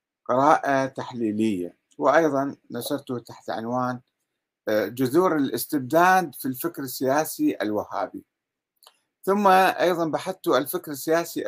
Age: 50-69